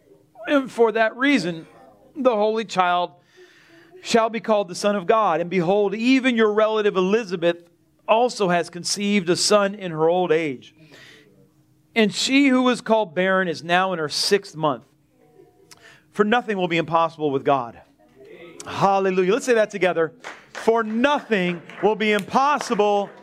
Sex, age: male, 40-59